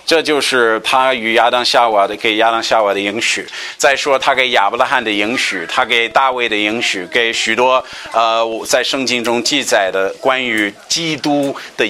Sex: male